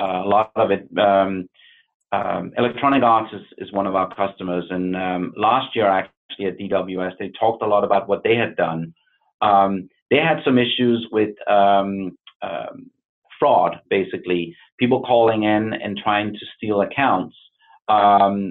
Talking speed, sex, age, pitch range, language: 160 wpm, male, 30-49, 100-135 Hz, English